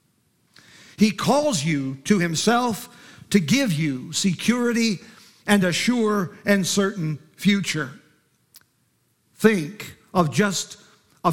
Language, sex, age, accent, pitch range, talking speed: English, male, 50-69, American, 165-205 Hz, 100 wpm